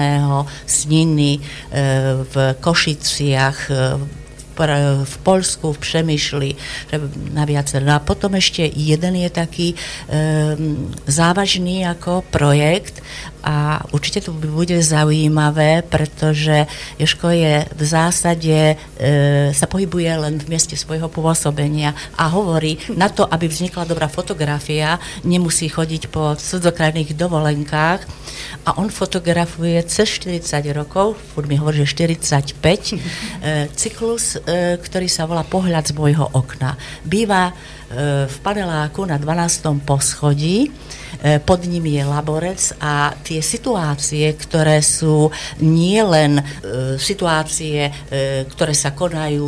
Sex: female